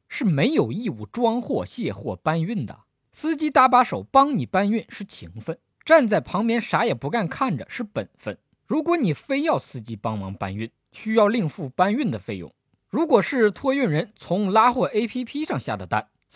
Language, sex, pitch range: Chinese, male, 160-255 Hz